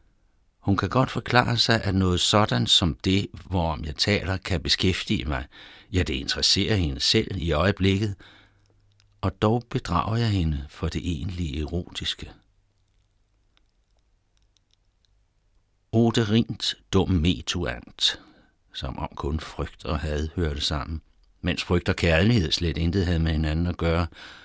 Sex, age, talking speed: male, 60-79, 135 wpm